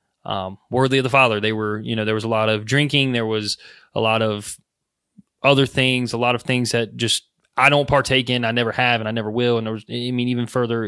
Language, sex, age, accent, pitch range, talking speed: English, male, 20-39, American, 115-135 Hz, 250 wpm